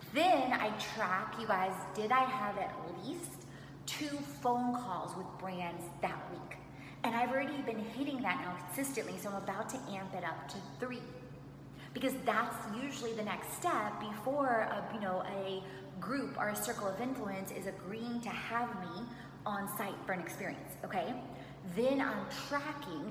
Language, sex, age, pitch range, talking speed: English, female, 20-39, 185-230 Hz, 165 wpm